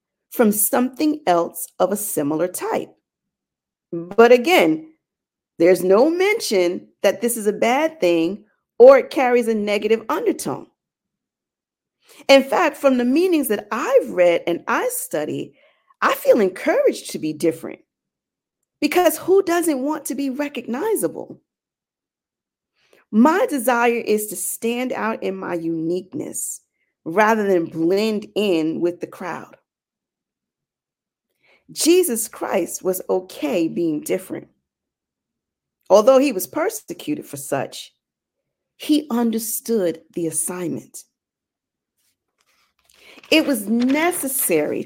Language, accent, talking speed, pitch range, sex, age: English, American, 110 wpm, 190-285 Hz, female, 40-59